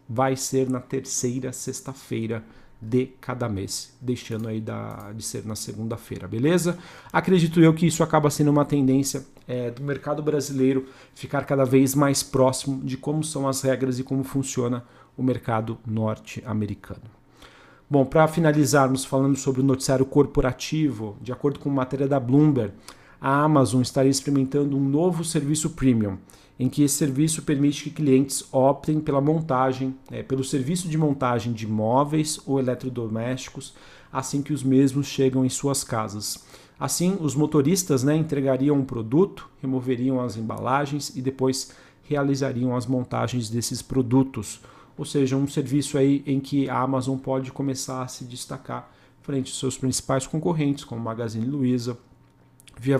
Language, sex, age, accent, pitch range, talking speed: Portuguese, male, 40-59, Brazilian, 125-140 Hz, 155 wpm